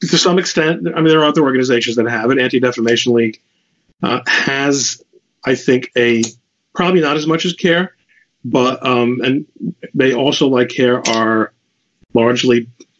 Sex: male